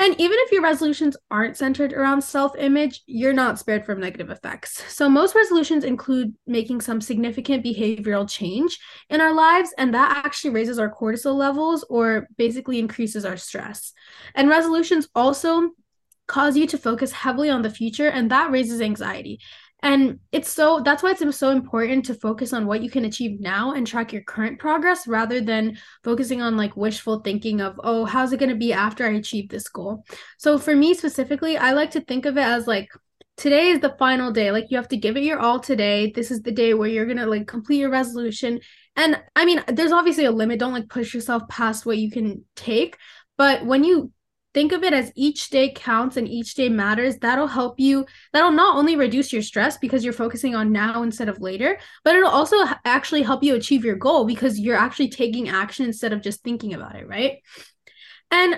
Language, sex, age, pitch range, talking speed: English, female, 10-29, 230-290 Hz, 205 wpm